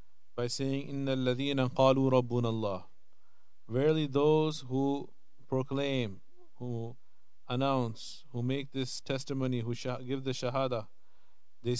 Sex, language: male, English